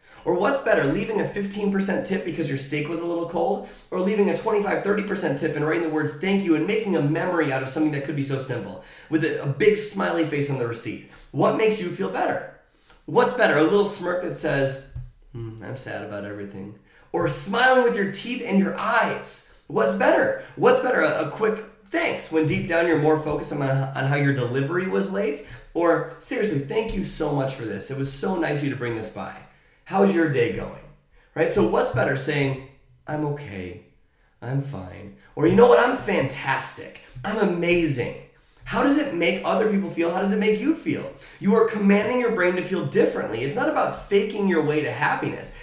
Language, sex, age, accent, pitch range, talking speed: English, male, 20-39, American, 135-195 Hz, 210 wpm